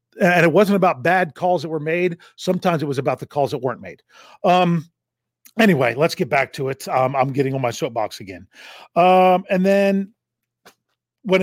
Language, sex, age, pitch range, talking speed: English, male, 40-59, 140-190 Hz, 190 wpm